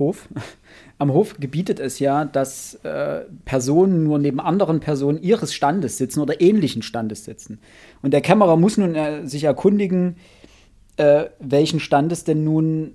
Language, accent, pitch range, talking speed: German, German, 125-155 Hz, 155 wpm